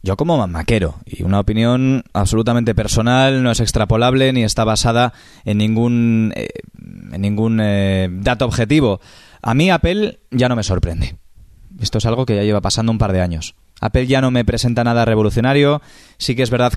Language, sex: Spanish, male